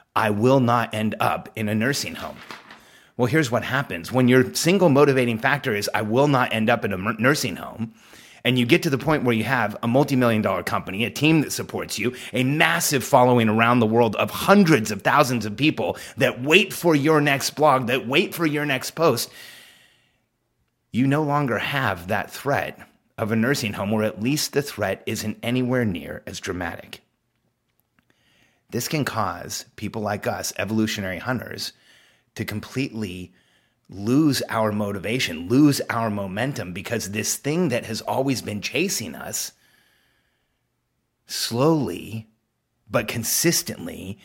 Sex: male